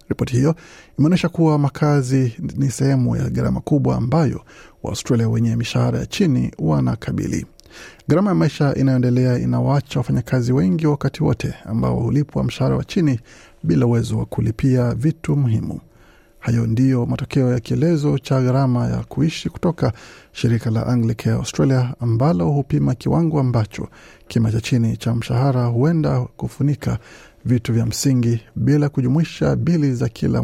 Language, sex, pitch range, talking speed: Swahili, male, 115-145 Hz, 140 wpm